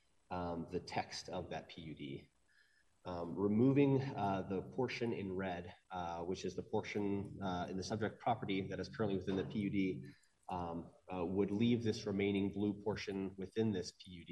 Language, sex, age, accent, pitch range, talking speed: English, male, 30-49, American, 90-110 Hz, 170 wpm